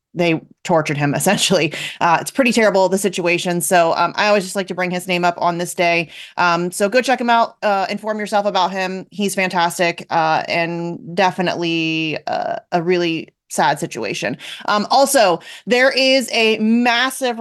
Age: 30-49